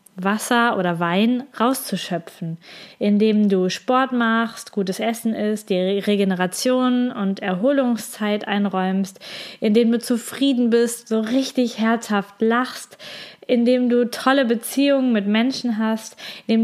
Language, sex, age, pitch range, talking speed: German, female, 20-39, 205-250 Hz, 115 wpm